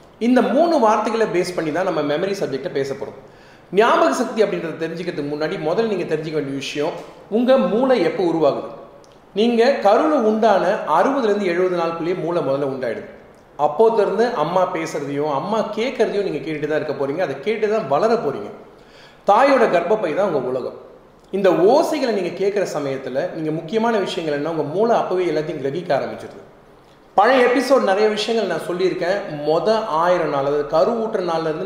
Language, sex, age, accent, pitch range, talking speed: Tamil, male, 30-49, native, 155-215 Hz, 155 wpm